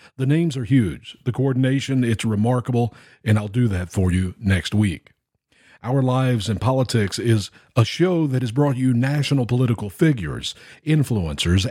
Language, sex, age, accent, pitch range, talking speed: English, male, 50-69, American, 105-135 Hz, 160 wpm